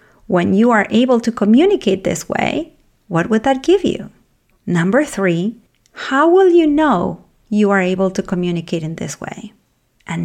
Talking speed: 165 wpm